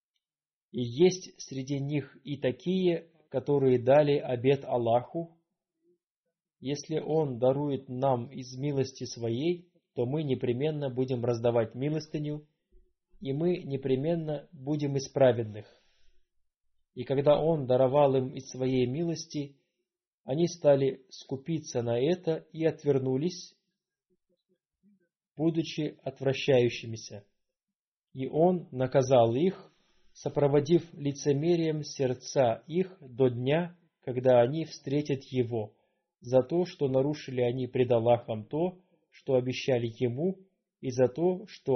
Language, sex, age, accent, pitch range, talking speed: Russian, male, 20-39, native, 130-165 Hz, 110 wpm